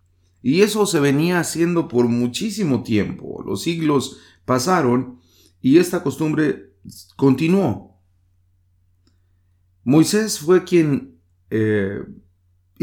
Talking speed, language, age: 90 wpm, English, 40-59